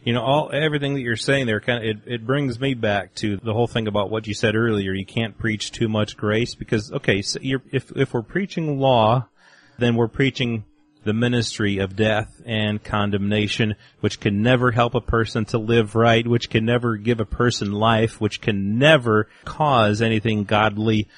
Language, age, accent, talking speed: English, 30-49, American, 200 wpm